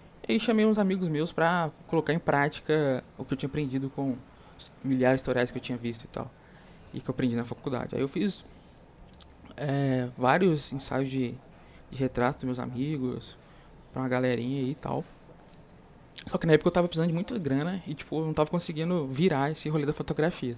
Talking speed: 195 wpm